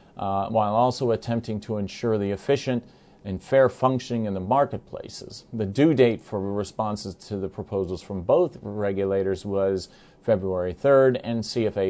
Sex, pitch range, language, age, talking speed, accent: male, 95-120 Hz, English, 40-59, 150 wpm, American